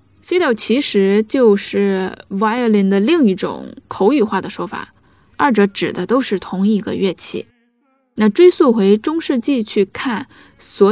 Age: 10-29